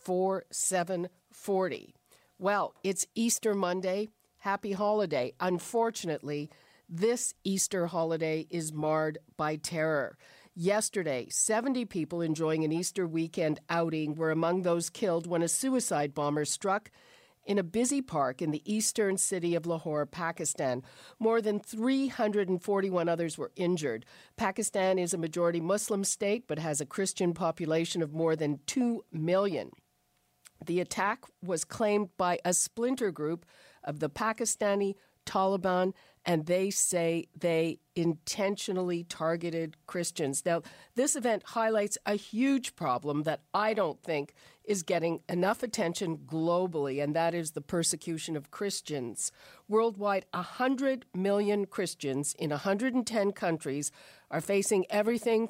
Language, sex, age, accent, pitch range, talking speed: English, female, 50-69, American, 160-205 Hz, 125 wpm